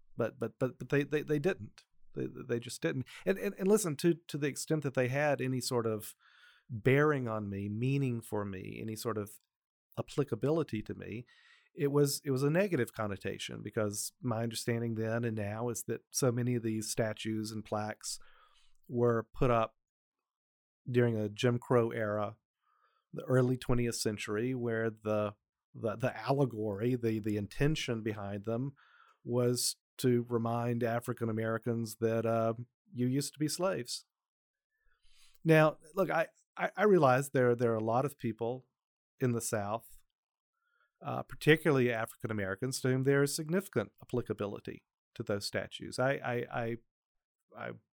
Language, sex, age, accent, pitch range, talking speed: English, male, 40-59, American, 110-140 Hz, 160 wpm